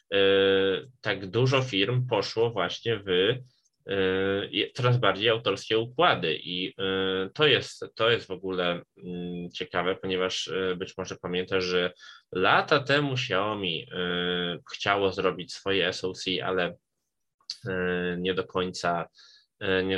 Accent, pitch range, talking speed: native, 95-120 Hz, 105 wpm